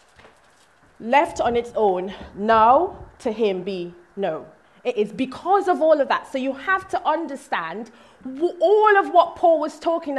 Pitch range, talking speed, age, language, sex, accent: 195-310 Hz, 165 wpm, 20-39, English, female, British